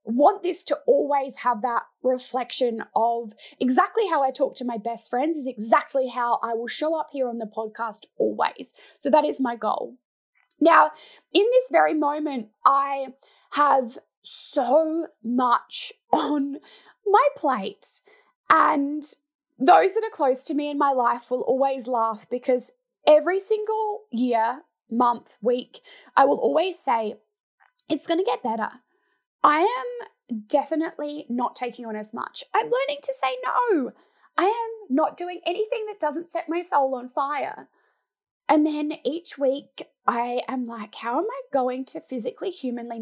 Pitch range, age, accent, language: 250-355 Hz, 20-39, Australian, English